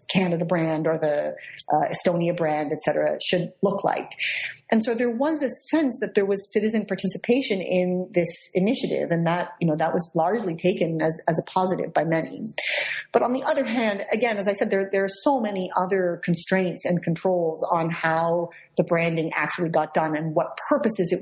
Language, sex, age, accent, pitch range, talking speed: English, female, 40-59, American, 170-200 Hz, 195 wpm